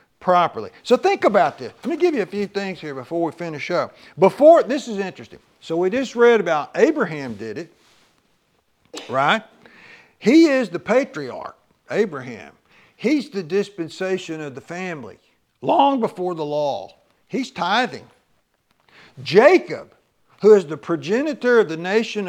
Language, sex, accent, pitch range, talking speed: English, male, American, 165-235 Hz, 150 wpm